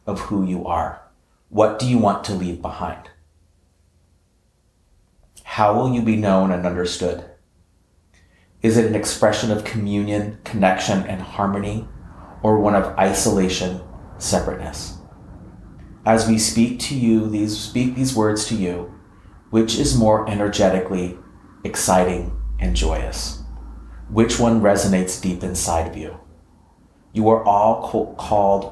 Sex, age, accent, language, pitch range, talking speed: male, 30-49, American, English, 90-110 Hz, 125 wpm